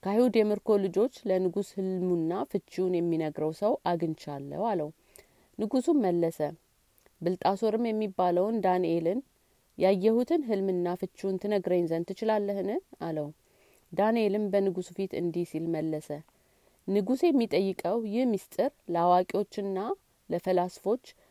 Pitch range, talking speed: 170-215 Hz, 85 wpm